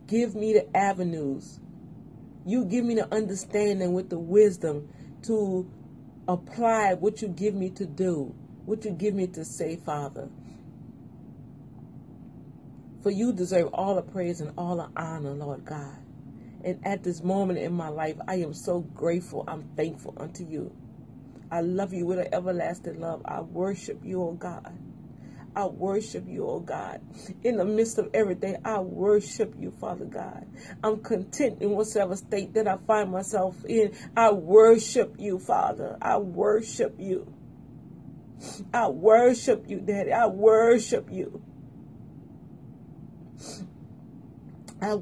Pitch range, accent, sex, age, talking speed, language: 170-215 Hz, American, female, 40-59, 140 wpm, English